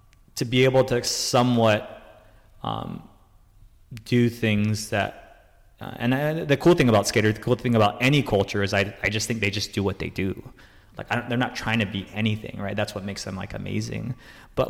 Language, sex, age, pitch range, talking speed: English, male, 20-39, 100-120 Hz, 210 wpm